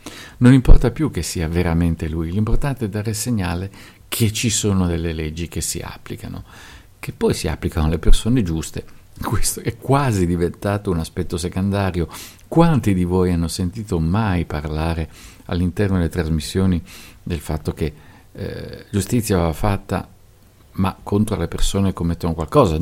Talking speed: 155 wpm